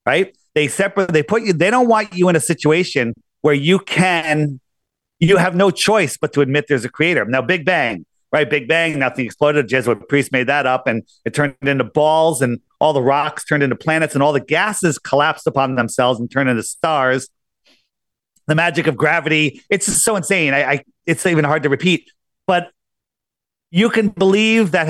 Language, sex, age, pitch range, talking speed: English, male, 40-59, 135-180 Hz, 200 wpm